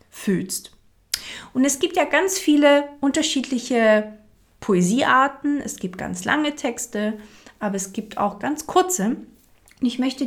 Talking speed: 125 wpm